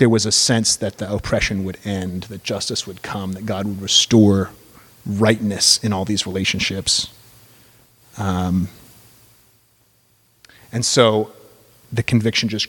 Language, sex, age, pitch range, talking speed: English, male, 30-49, 100-120 Hz, 130 wpm